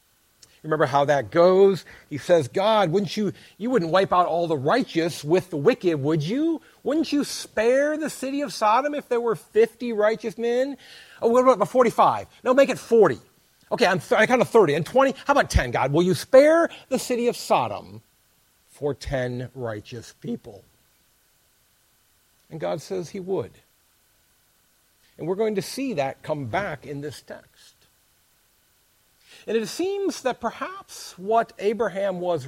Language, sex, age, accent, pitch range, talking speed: English, male, 50-69, American, 145-230 Hz, 165 wpm